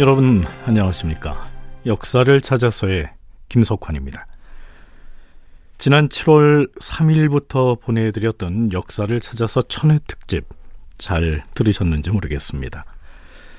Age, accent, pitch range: 40-59, native, 85-145 Hz